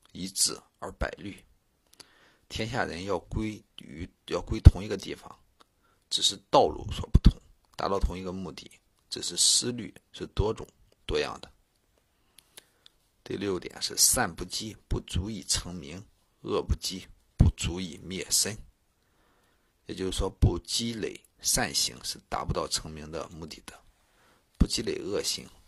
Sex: male